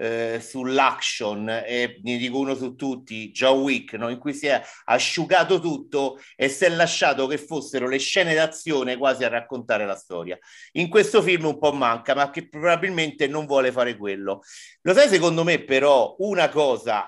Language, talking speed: Italian, 175 wpm